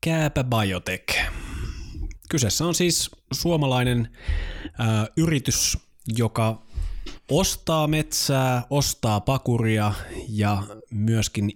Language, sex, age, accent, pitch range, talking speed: Finnish, male, 20-39, native, 95-120 Hz, 75 wpm